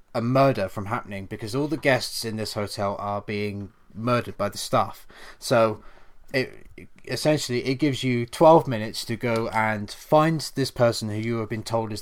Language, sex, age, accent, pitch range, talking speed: English, male, 20-39, British, 105-130 Hz, 185 wpm